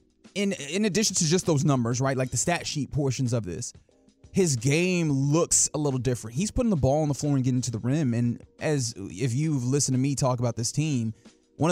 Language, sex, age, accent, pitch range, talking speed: English, male, 20-39, American, 125-155 Hz, 230 wpm